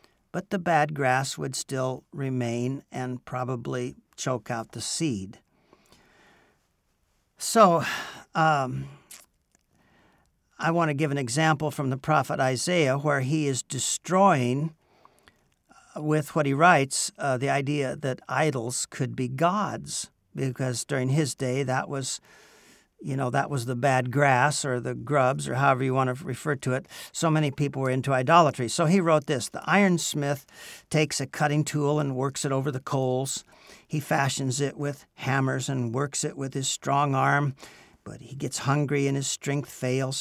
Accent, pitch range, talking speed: American, 130-150 Hz, 165 wpm